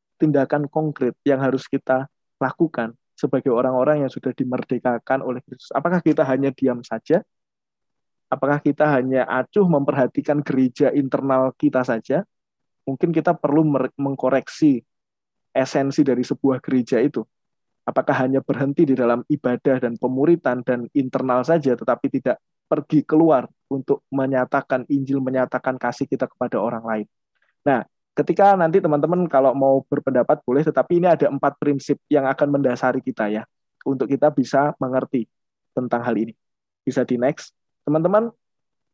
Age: 20-39